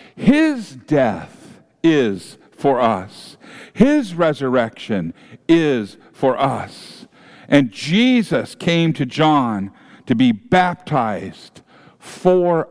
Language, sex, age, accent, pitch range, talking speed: English, male, 50-69, American, 130-195 Hz, 90 wpm